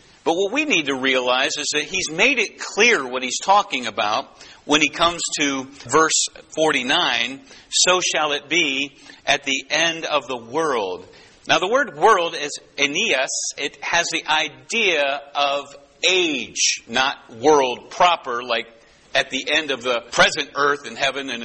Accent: American